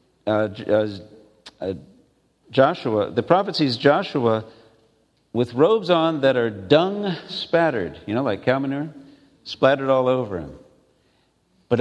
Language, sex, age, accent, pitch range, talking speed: English, male, 50-69, American, 105-155 Hz, 125 wpm